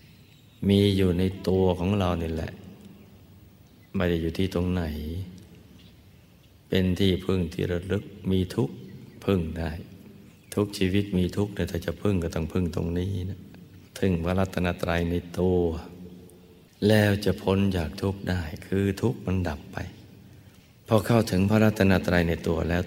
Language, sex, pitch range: Thai, male, 85-100 Hz